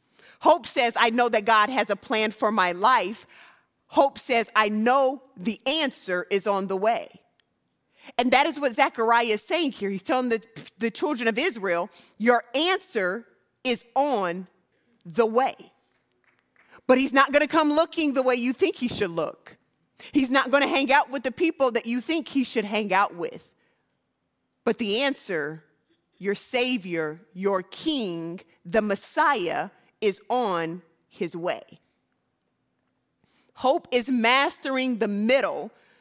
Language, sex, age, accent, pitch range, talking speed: English, female, 30-49, American, 195-270 Hz, 155 wpm